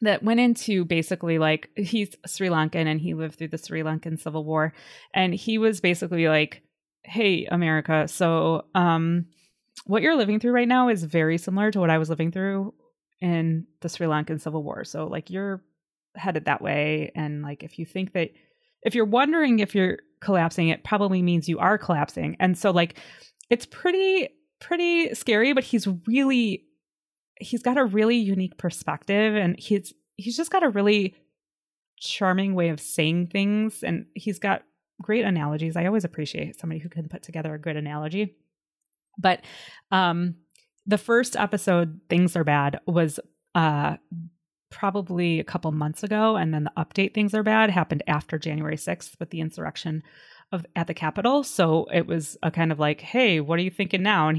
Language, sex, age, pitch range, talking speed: English, female, 20-39, 160-210 Hz, 180 wpm